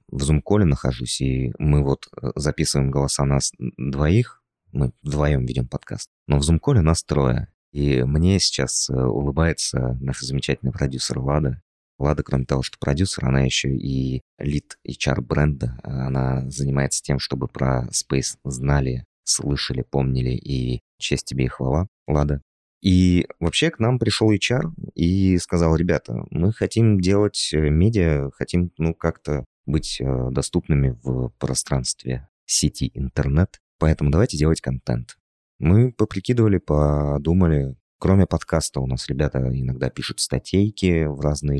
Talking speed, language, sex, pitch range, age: 135 wpm, Russian, male, 65-80 Hz, 20-39